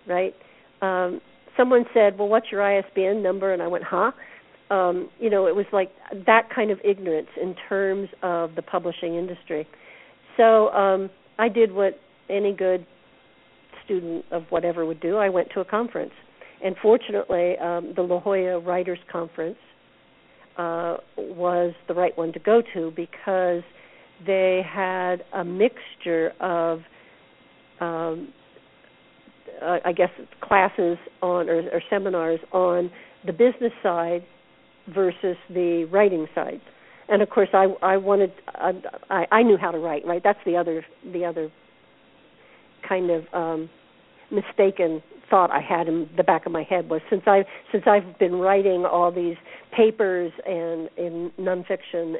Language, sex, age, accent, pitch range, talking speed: English, female, 50-69, American, 170-200 Hz, 150 wpm